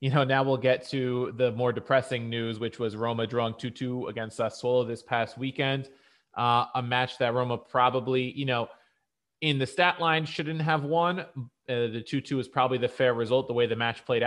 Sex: male